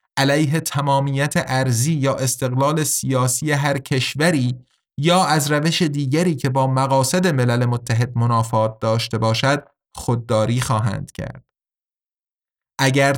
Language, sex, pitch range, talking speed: Persian, male, 125-150 Hz, 110 wpm